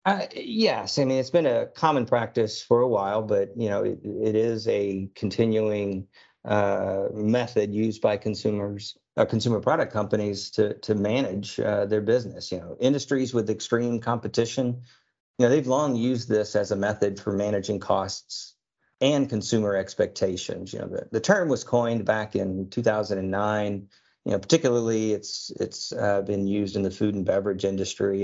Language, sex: English, male